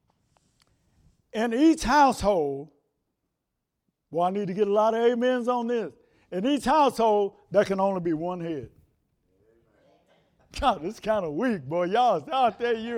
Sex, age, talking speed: male, 60-79, 155 wpm